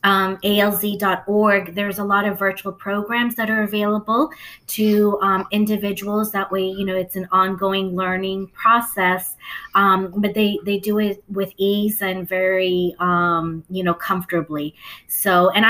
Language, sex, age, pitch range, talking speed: English, female, 20-39, 185-215 Hz, 150 wpm